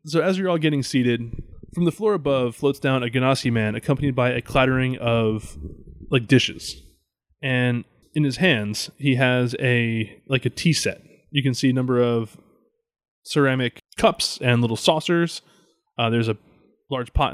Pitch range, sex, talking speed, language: 115-140 Hz, male, 170 wpm, English